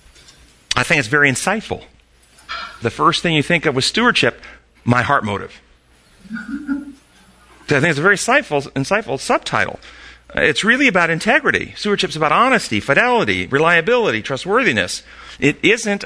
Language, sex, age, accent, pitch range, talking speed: English, male, 40-59, American, 130-200 Hz, 140 wpm